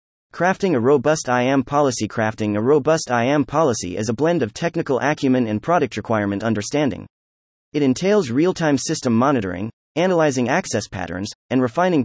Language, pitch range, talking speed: English, 105-155 Hz, 150 wpm